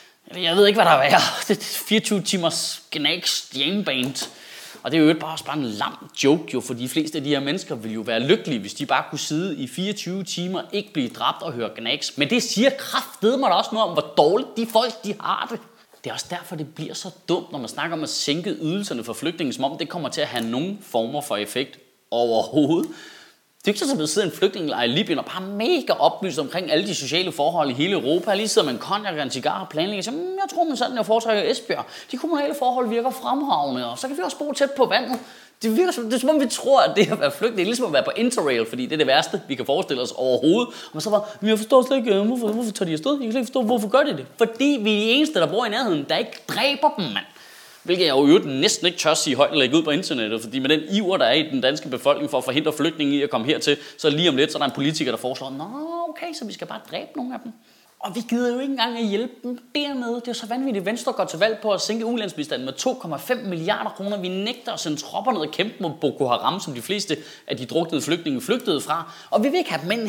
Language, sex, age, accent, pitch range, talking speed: Danish, male, 30-49, native, 155-245 Hz, 270 wpm